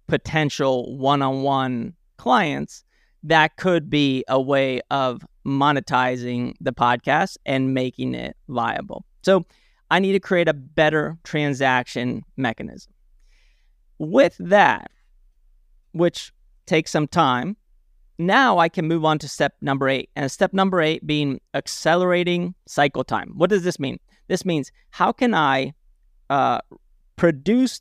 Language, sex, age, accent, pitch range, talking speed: English, male, 30-49, American, 135-175 Hz, 130 wpm